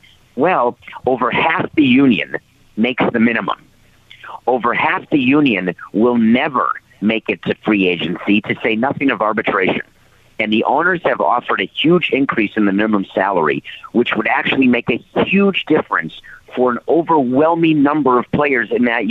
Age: 50-69